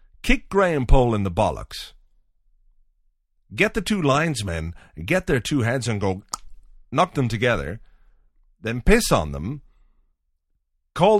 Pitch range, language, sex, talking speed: 85-135 Hz, English, male, 130 wpm